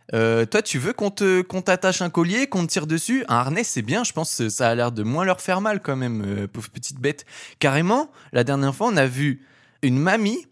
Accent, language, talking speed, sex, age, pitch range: French, French, 255 wpm, male, 20-39, 120-170 Hz